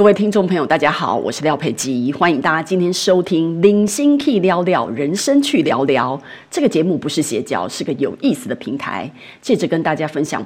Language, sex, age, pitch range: Chinese, female, 30-49, 155-230 Hz